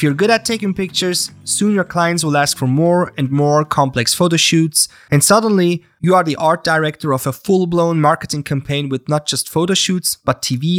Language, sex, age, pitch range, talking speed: English, male, 30-49, 140-175 Hz, 210 wpm